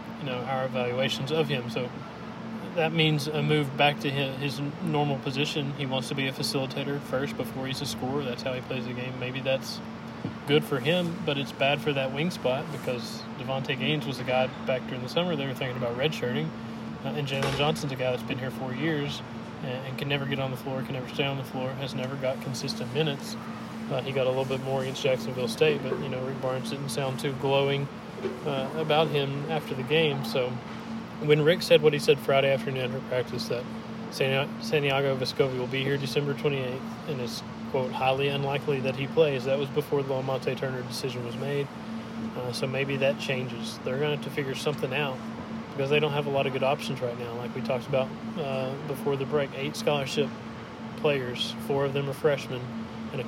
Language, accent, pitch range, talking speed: English, American, 125-140 Hz, 220 wpm